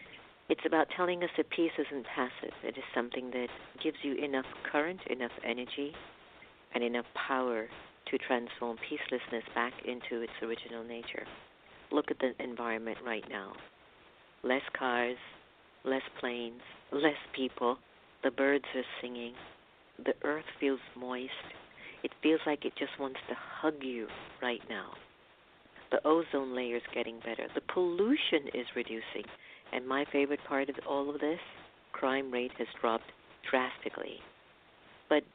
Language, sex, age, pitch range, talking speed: English, female, 50-69, 120-145 Hz, 145 wpm